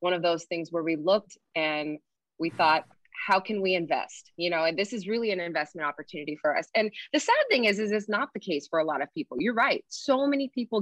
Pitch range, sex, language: 170-215 Hz, female, English